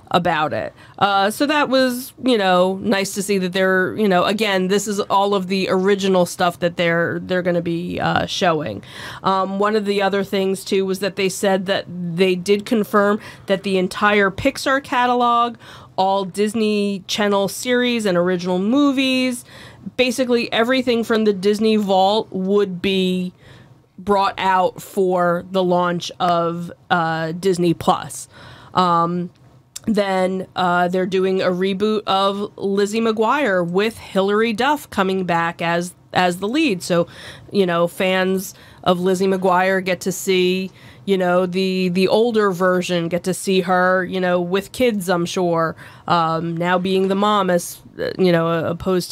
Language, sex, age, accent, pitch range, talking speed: English, female, 30-49, American, 175-205 Hz, 155 wpm